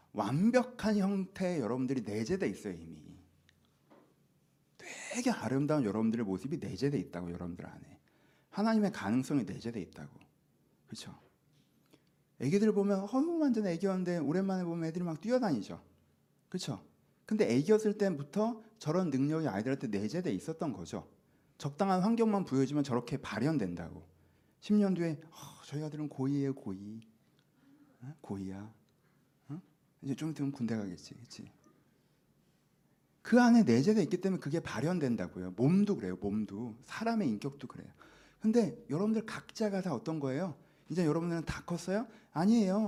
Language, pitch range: Korean, 130-210 Hz